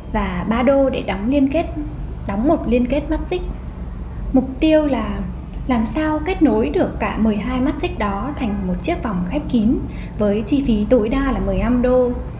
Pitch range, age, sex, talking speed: 210-295 Hz, 20-39, female, 195 wpm